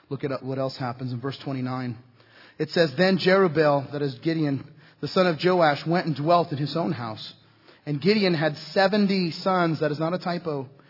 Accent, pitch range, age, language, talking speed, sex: American, 145-175 Hz, 30-49, English, 205 wpm, male